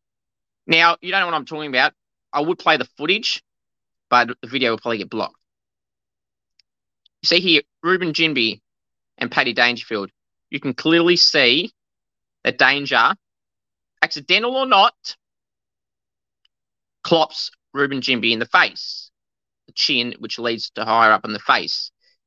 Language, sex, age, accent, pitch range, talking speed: English, male, 20-39, Australian, 135-200 Hz, 145 wpm